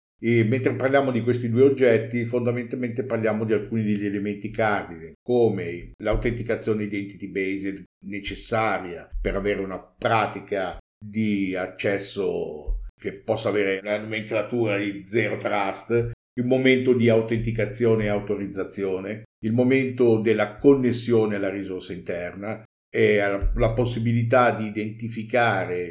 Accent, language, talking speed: native, Italian, 120 wpm